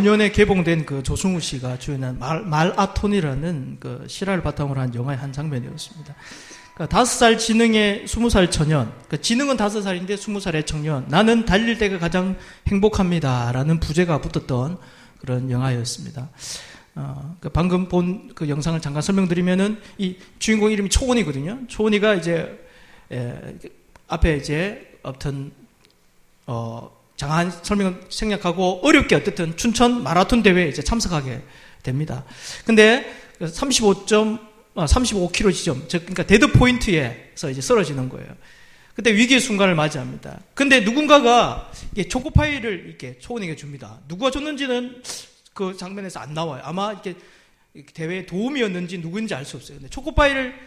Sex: male